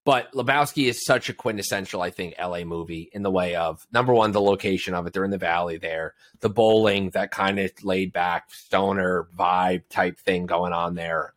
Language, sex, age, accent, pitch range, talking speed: English, male, 30-49, American, 95-120 Hz, 195 wpm